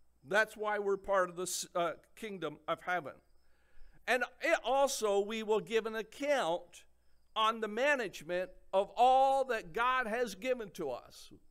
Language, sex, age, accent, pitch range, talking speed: English, male, 50-69, American, 195-250 Hz, 140 wpm